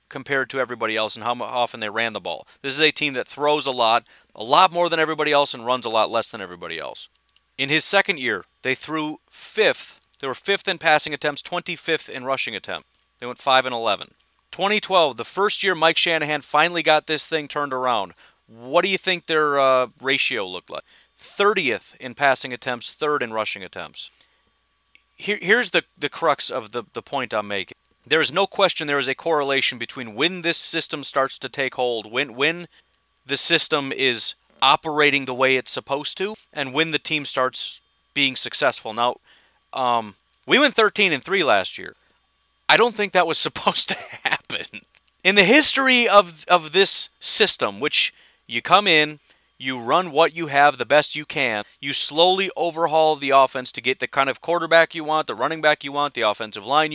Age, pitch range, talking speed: 40-59, 130-165 Hz, 195 wpm